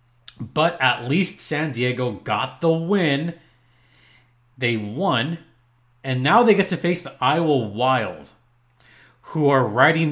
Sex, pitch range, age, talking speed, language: male, 125-170 Hz, 30-49, 130 wpm, English